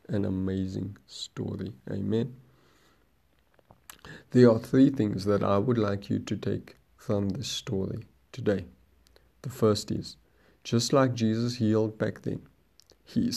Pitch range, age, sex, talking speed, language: 100-120 Hz, 50-69, male, 130 wpm, English